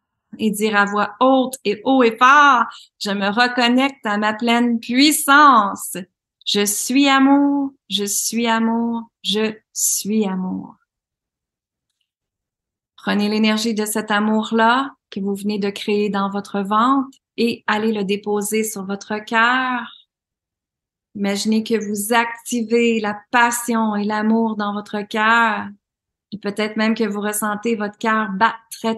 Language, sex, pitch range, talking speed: French, female, 200-225 Hz, 135 wpm